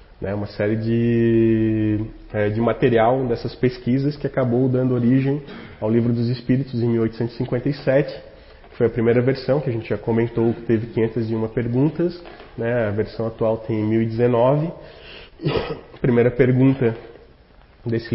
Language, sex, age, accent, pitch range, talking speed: Portuguese, male, 20-39, Brazilian, 110-125 Hz, 135 wpm